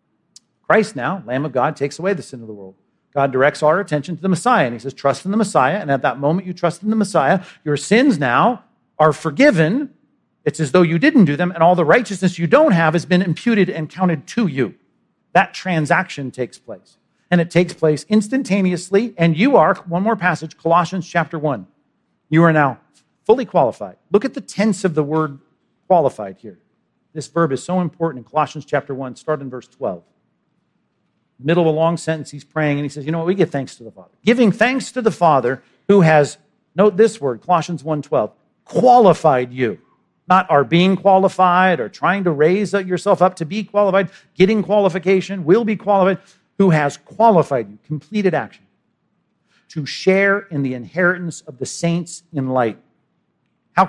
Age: 50-69